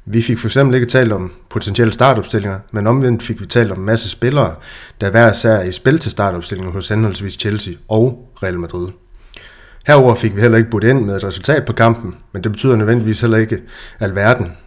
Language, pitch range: Danish, 105-120 Hz